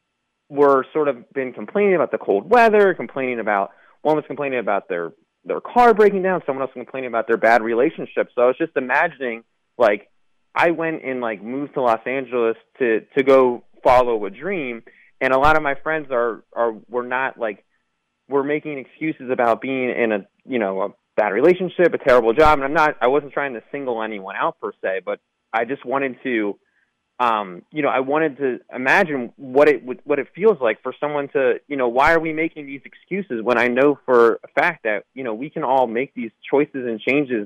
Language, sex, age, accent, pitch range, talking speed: English, male, 30-49, American, 115-145 Hz, 210 wpm